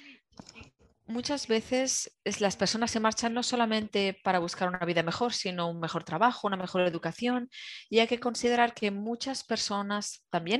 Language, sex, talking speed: English, female, 165 wpm